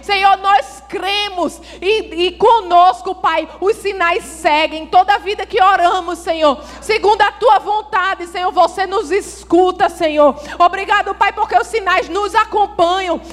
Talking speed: 145 wpm